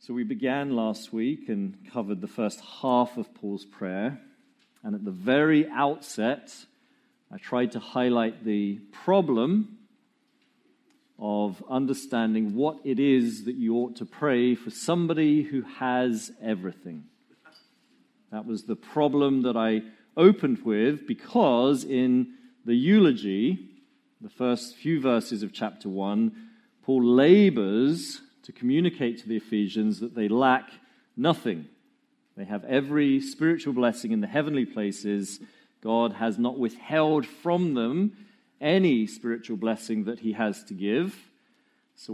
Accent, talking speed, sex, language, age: British, 130 wpm, male, English, 40-59